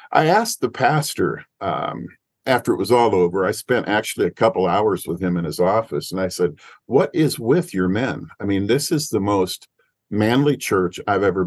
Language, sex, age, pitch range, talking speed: English, male, 50-69, 95-115 Hz, 205 wpm